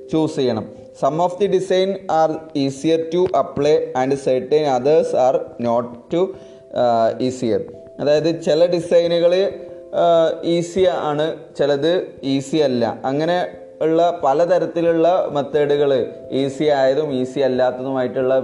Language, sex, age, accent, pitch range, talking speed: Malayalam, male, 20-39, native, 125-170 Hz, 105 wpm